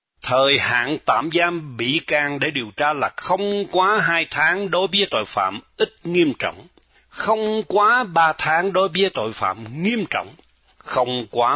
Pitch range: 120-190 Hz